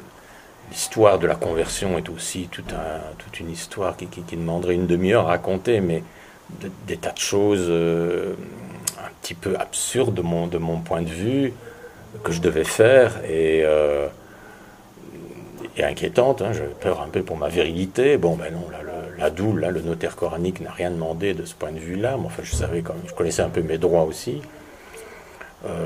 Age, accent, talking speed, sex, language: 50-69, French, 200 wpm, male, French